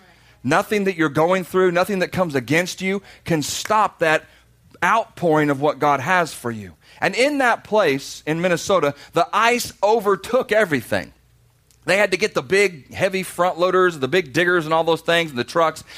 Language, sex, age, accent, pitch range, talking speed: English, male, 40-59, American, 145-190 Hz, 185 wpm